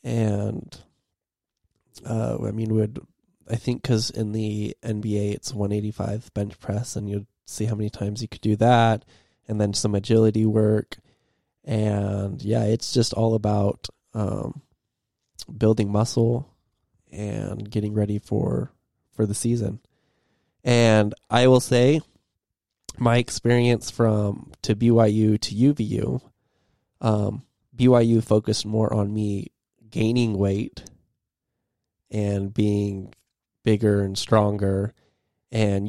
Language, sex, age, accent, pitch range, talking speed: English, male, 20-39, American, 100-115 Hz, 120 wpm